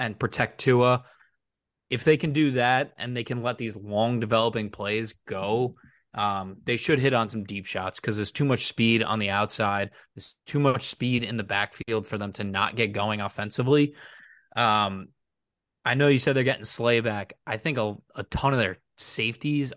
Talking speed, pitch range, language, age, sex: 190 wpm, 110-130 Hz, English, 20-39, male